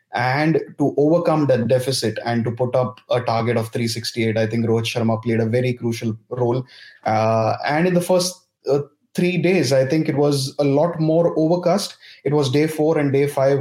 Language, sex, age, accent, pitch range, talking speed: English, male, 20-39, Indian, 120-135 Hz, 200 wpm